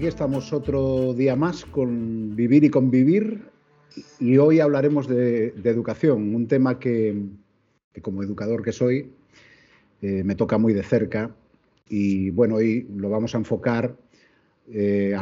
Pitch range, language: 100-120 Hz, Spanish